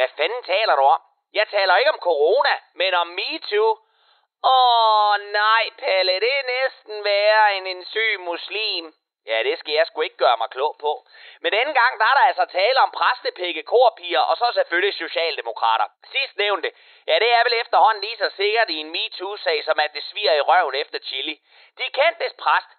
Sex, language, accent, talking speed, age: male, Danish, native, 195 wpm, 30-49